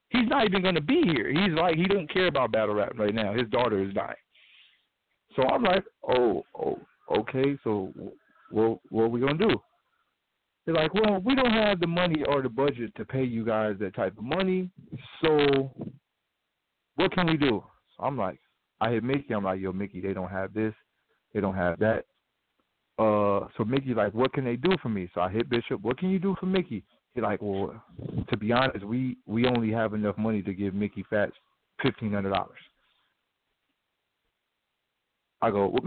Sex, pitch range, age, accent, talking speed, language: male, 105-150 Hz, 40-59, American, 200 wpm, English